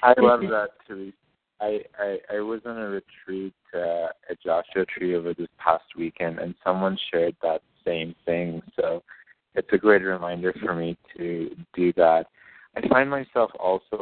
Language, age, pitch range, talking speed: English, 30-49, 85-100 Hz, 165 wpm